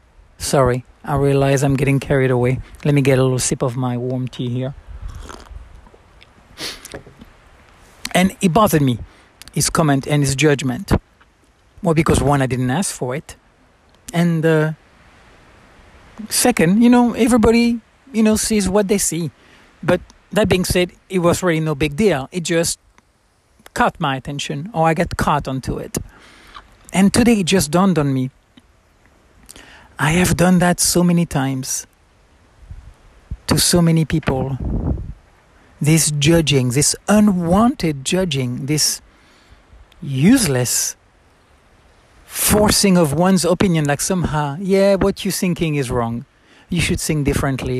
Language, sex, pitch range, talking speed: English, male, 120-180 Hz, 135 wpm